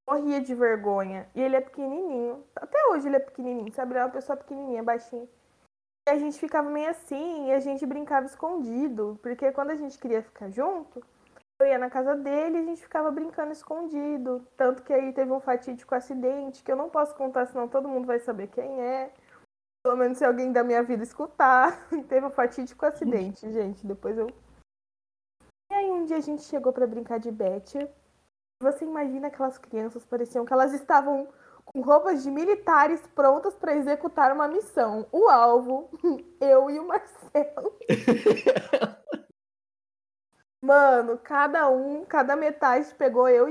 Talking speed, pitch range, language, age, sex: 170 wpm, 255-305 Hz, Portuguese, 20-39, female